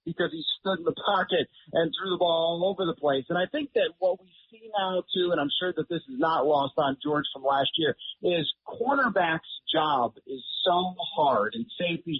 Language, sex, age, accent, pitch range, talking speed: English, male, 40-59, American, 155-190 Hz, 215 wpm